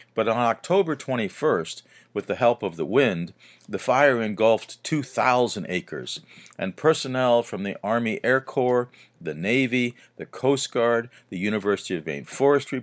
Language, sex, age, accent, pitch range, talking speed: English, male, 50-69, American, 95-125 Hz, 150 wpm